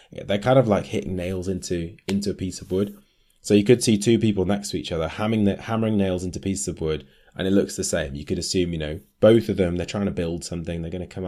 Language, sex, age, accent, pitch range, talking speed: English, male, 20-39, British, 80-100 Hz, 265 wpm